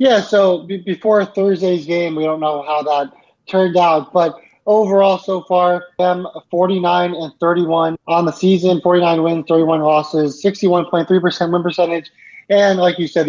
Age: 20-39